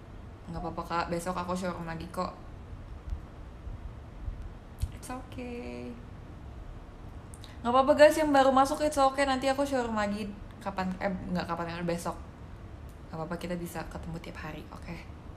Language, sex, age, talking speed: Malay, female, 20-39, 140 wpm